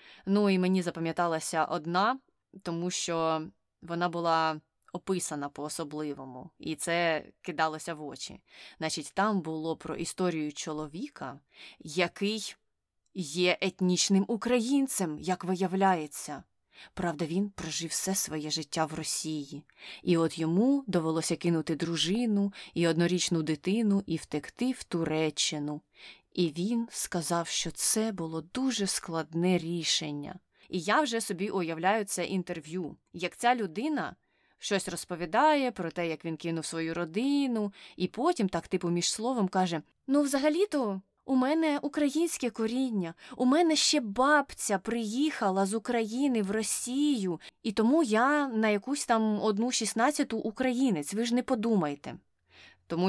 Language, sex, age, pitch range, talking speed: Ukrainian, female, 20-39, 165-220 Hz, 130 wpm